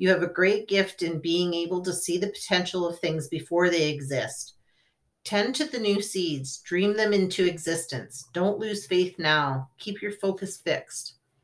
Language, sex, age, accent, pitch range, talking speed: English, female, 40-59, American, 165-190 Hz, 180 wpm